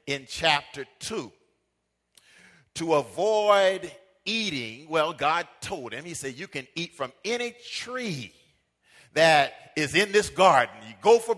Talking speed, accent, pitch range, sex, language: 135 wpm, American, 145-215 Hz, male, English